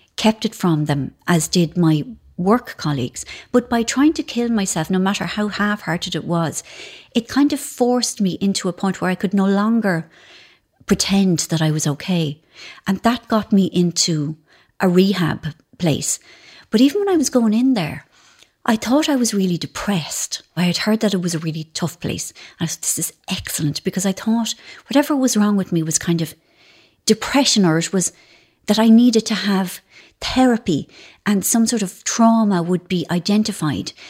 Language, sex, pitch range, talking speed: English, female, 170-225 Hz, 185 wpm